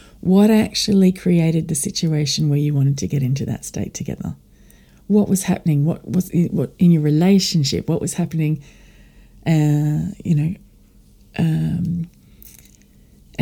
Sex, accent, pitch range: female, Australian, 145-180 Hz